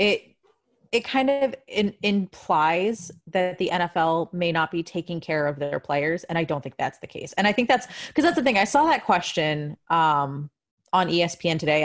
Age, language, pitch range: 20-39, English, 160-205 Hz